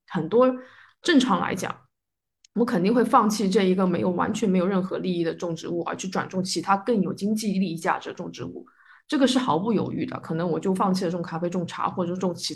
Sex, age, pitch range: female, 20-39, 185-235 Hz